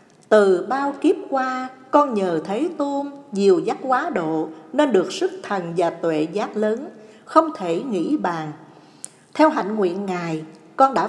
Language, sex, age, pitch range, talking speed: Vietnamese, female, 60-79, 170-275 Hz, 160 wpm